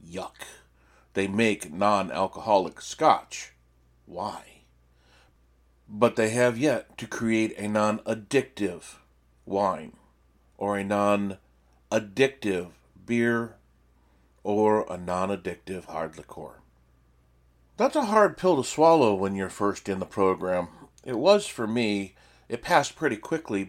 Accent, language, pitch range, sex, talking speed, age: American, English, 70-110 Hz, male, 110 wpm, 40-59